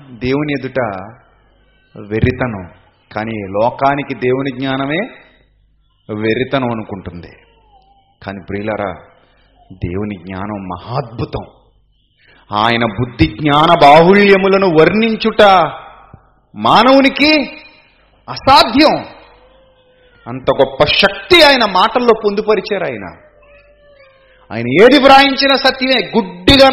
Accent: native